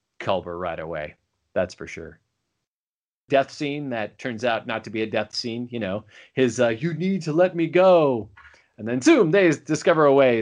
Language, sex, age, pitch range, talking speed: English, male, 30-49, 115-160 Hz, 195 wpm